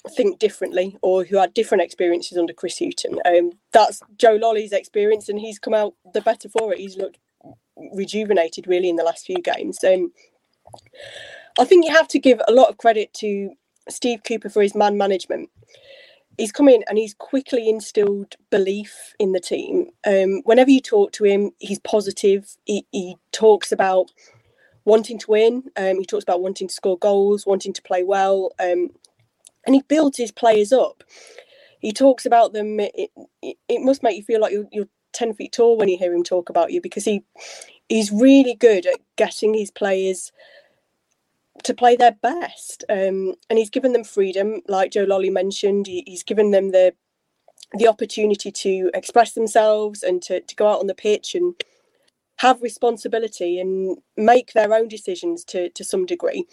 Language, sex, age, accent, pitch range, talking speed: English, female, 20-39, British, 195-255 Hz, 185 wpm